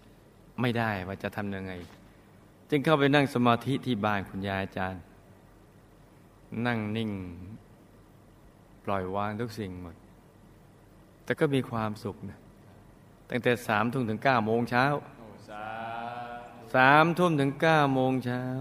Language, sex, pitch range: Thai, male, 105-130 Hz